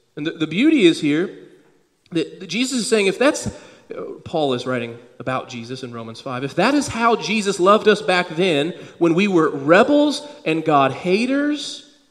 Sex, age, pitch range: male, 40-59, 140-220 Hz